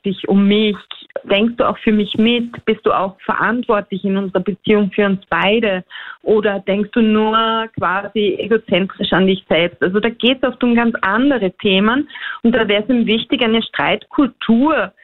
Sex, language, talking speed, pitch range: female, German, 180 wpm, 195-245 Hz